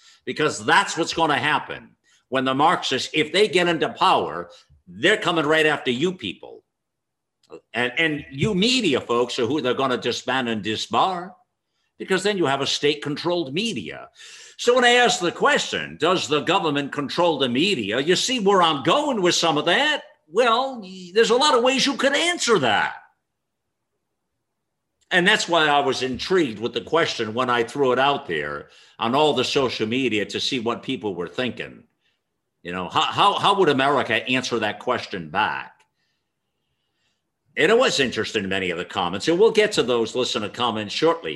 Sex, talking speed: male, 180 wpm